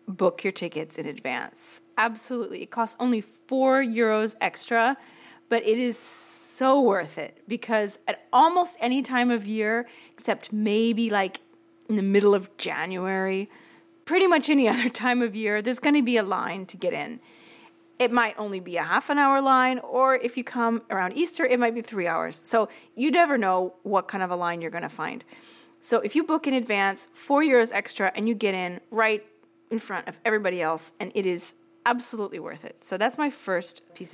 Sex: female